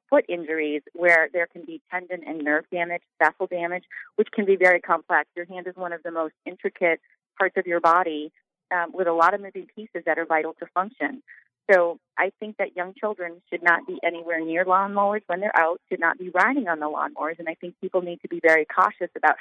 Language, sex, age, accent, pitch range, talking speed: English, female, 30-49, American, 155-185 Hz, 225 wpm